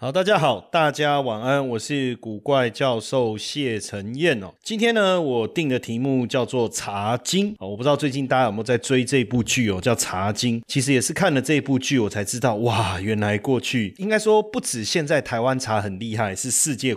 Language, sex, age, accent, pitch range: Chinese, male, 30-49, native, 110-150 Hz